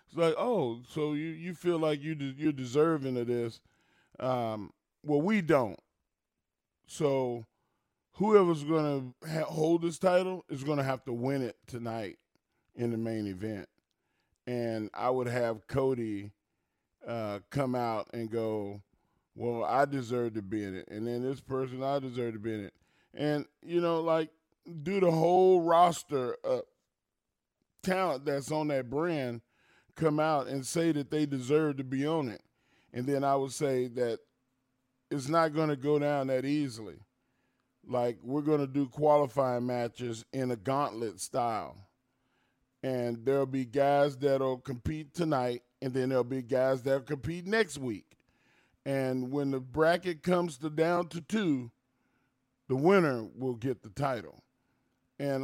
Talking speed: 160 wpm